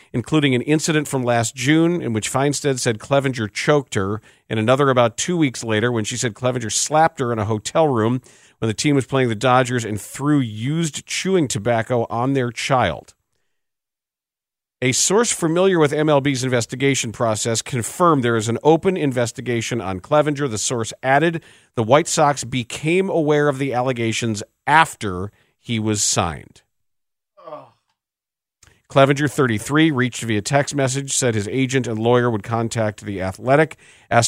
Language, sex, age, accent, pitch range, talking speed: English, male, 40-59, American, 110-145 Hz, 160 wpm